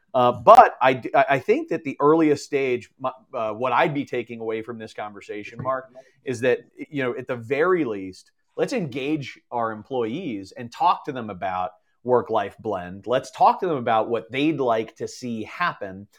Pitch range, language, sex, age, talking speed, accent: 115-155 Hz, English, male, 30-49, 180 wpm, American